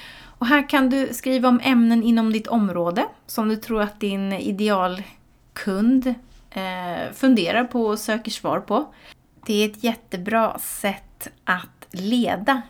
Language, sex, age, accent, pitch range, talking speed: Swedish, female, 30-49, native, 185-230 Hz, 135 wpm